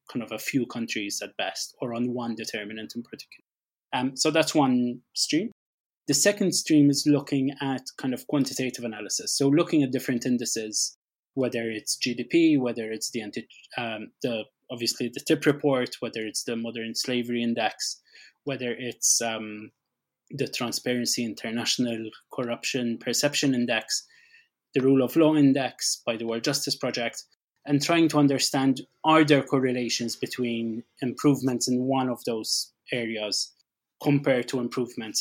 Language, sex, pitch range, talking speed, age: English, male, 120-145 Hz, 150 wpm, 20-39